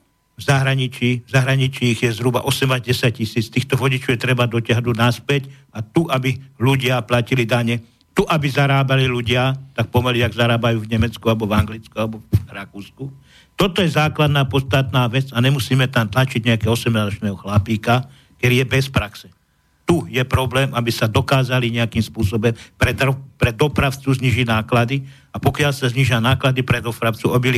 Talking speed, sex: 160 wpm, male